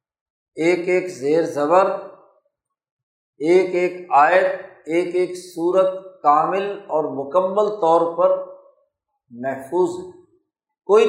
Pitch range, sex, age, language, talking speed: 155-210 Hz, male, 50-69, Urdu, 95 wpm